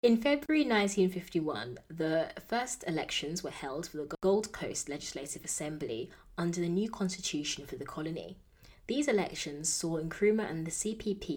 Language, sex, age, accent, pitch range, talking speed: English, female, 20-39, British, 150-195 Hz, 150 wpm